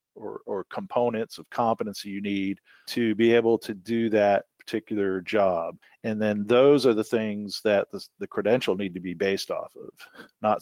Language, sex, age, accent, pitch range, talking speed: English, male, 50-69, American, 105-130 Hz, 180 wpm